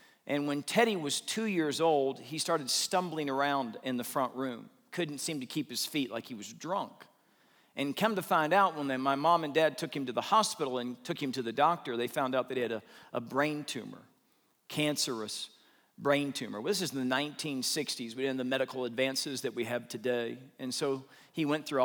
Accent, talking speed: American, 220 wpm